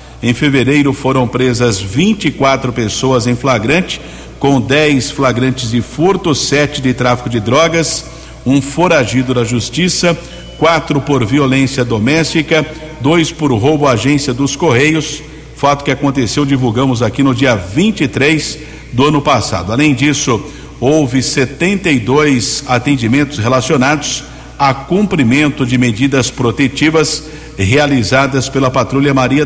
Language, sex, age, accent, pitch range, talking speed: Portuguese, male, 50-69, Brazilian, 130-150 Hz, 120 wpm